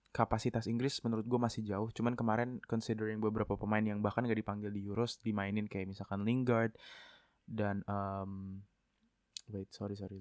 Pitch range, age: 105-120 Hz, 20-39